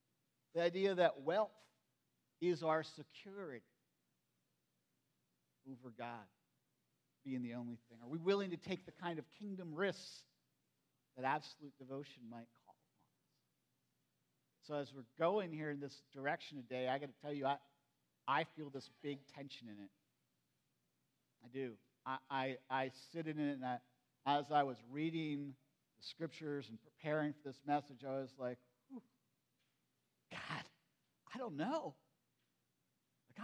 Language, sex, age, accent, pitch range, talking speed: English, male, 50-69, American, 125-185 Hz, 145 wpm